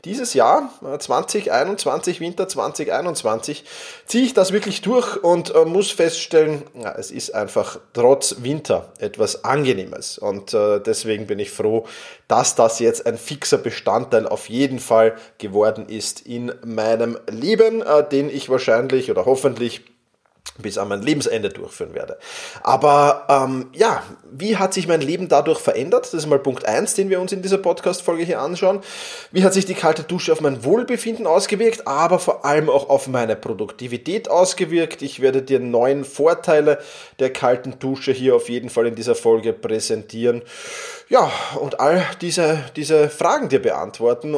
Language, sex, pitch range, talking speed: German, male, 120-195 Hz, 155 wpm